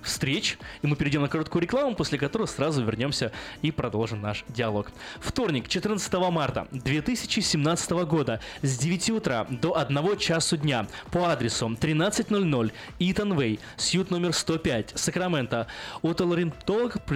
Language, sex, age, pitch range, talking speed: Russian, male, 20-39, 125-175 Hz, 130 wpm